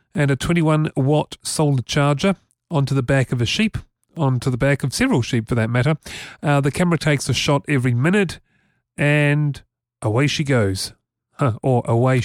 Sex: male